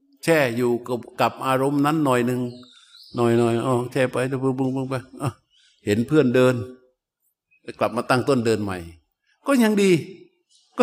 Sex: male